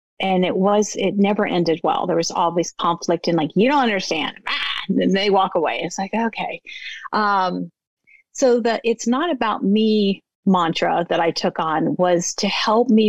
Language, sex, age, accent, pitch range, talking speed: English, female, 40-59, American, 170-215 Hz, 185 wpm